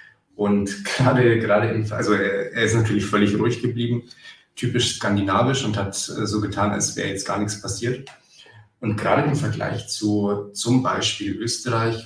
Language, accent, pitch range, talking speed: German, German, 100-115 Hz, 155 wpm